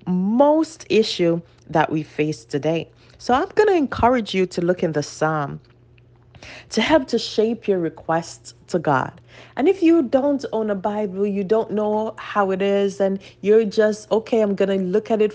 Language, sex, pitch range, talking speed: English, female, 160-230 Hz, 190 wpm